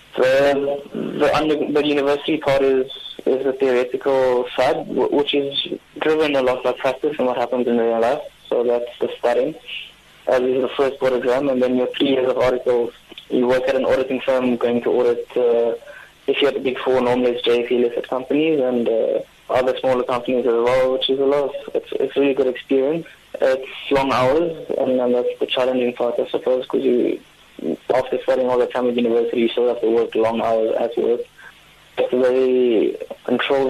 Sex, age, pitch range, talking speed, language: male, 20-39, 120-140 Hz, 200 wpm, English